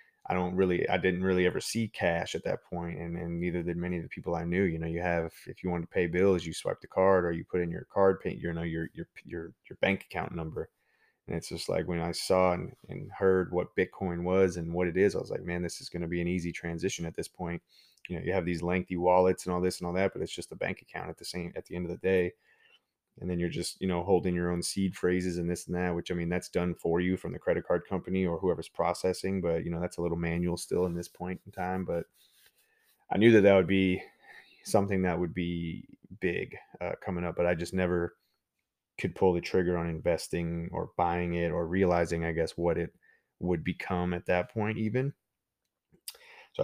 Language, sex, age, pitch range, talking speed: English, male, 20-39, 85-95 Hz, 250 wpm